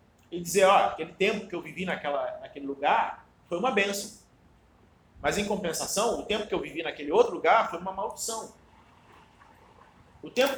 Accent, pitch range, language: Brazilian, 170-240 Hz, Portuguese